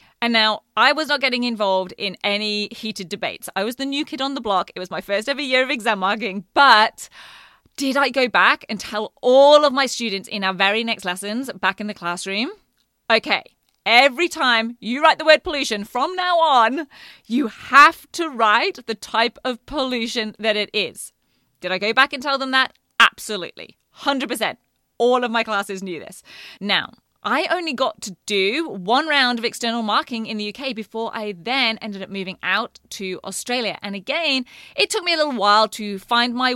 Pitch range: 205-270 Hz